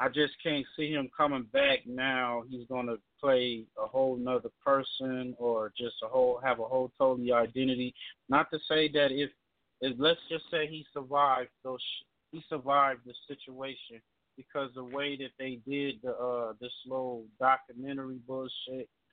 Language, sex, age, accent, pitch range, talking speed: English, male, 30-49, American, 125-145 Hz, 165 wpm